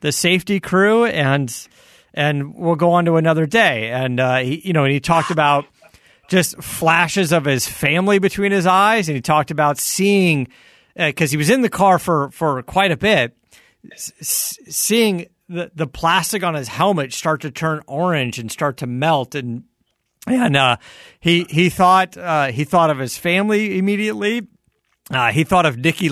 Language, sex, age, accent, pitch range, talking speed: English, male, 40-59, American, 130-175 Hz, 180 wpm